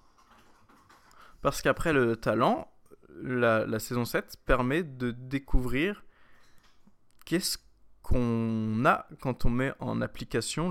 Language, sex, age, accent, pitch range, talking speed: French, male, 20-39, French, 125-165 Hz, 105 wpm